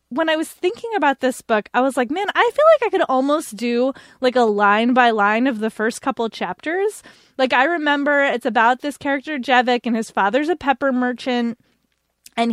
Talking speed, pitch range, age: 205 wpm, 220-285 Hz, 20-39